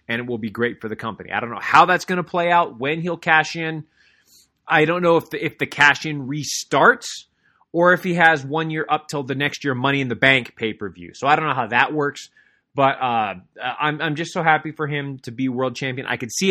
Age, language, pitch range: 20-39, English, 130-180 Hz